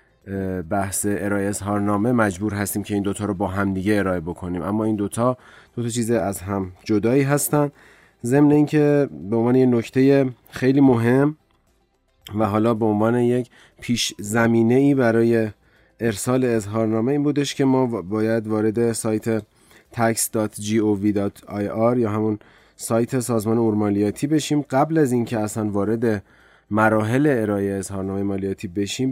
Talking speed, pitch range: 130 wpm, 105-120 Hz